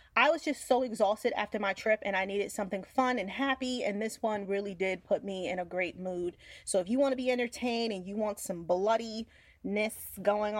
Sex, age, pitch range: female, 30-49, 195-250 Hz